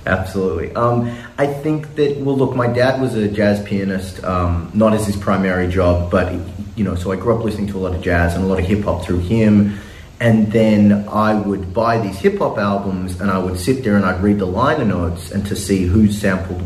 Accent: Australian